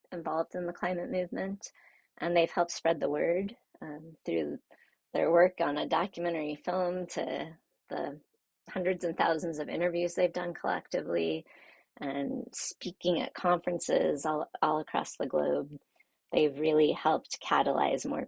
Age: 30-49